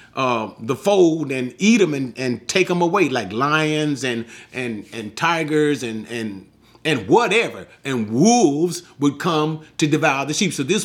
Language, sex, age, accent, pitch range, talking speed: English, male, 40-59, American, 135-180 Hz, 170 wpm